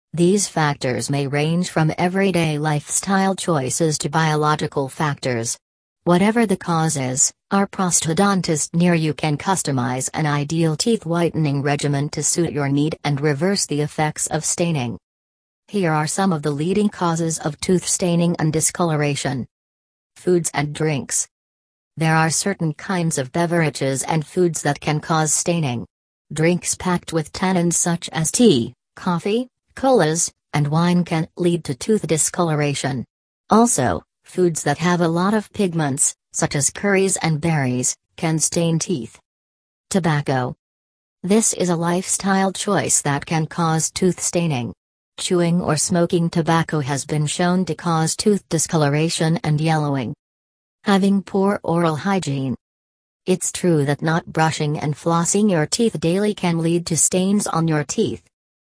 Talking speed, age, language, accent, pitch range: 145 wpm, 40-59, English, American, 145-175 Hz